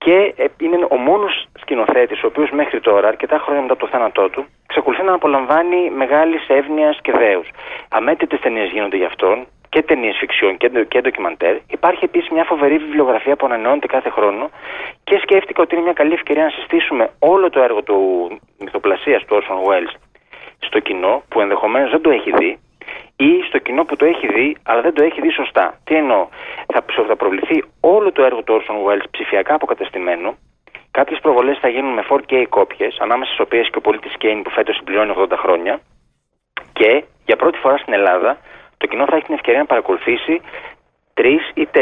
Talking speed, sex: 180 wpm, male